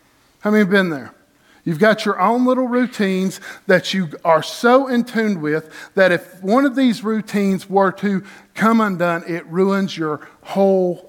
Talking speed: 175 wpm